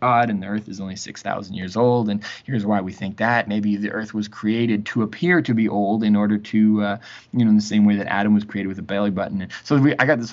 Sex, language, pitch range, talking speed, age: male, English, 100-110 Hz, 285 wpm, 20-39